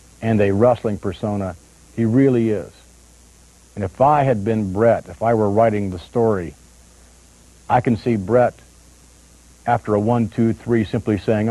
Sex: male